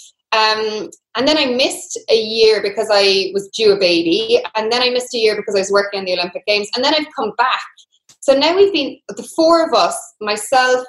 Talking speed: 225 wpm